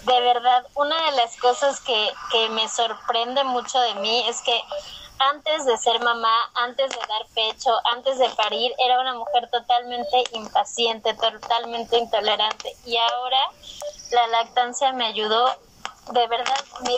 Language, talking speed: Spanish, 150 wpm